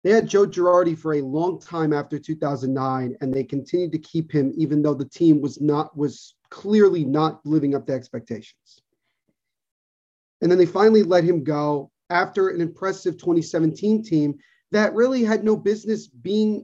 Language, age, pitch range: English, 30-49, 160-215 Hz